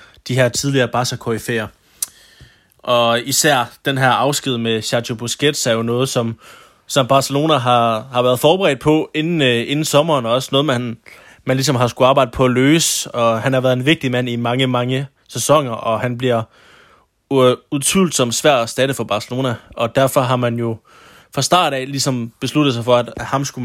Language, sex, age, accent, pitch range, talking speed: Danish, male, 20-39, native, 120-135 Hz, 200 wpm